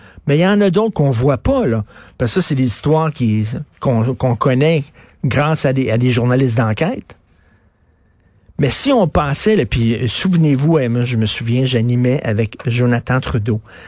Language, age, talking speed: French, 50-69, 175 wpm